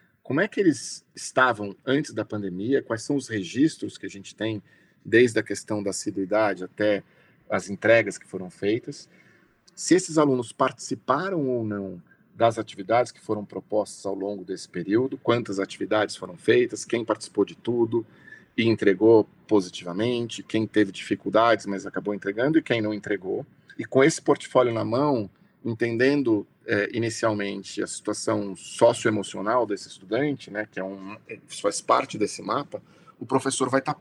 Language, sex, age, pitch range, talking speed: Portuguese, male, 40-59, 105-135 Hz, 160 wpm